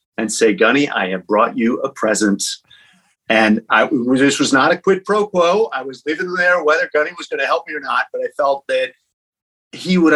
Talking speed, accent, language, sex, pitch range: 220 wpm, American, English, male, 130-175 Hz